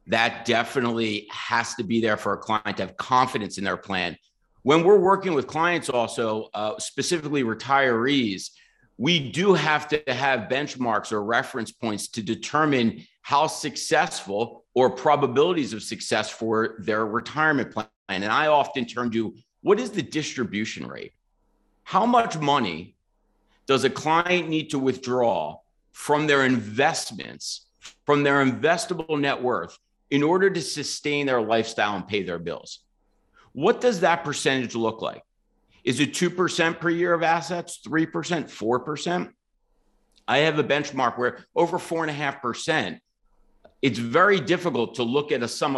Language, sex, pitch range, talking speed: English, male, 115-160 Hz, 145 wpm